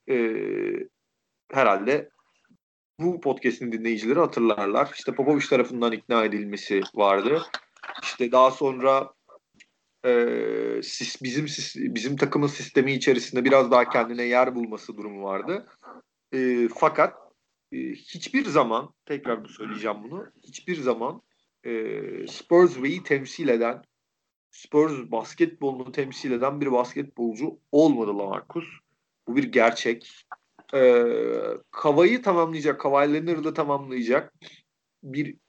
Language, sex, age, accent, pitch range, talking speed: Turkish, male, 40-59, native, 125-170 Hz, 110 wpm